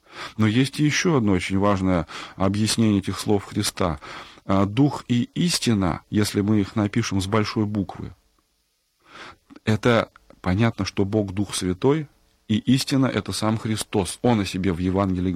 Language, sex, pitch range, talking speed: Russian, male, 100-125 Hz, 150 wpm